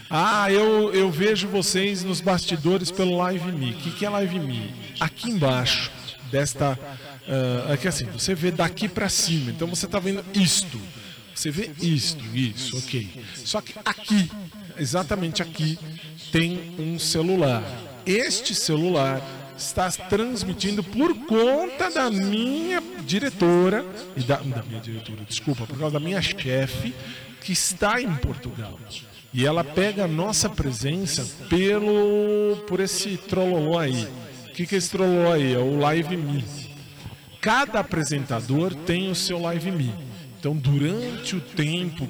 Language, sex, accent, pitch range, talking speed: Portuguese, male, Brazilian, 135-195 Hz, 140 wpm